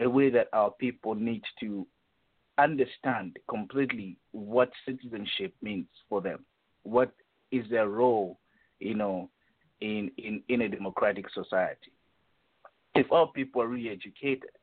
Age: 50-69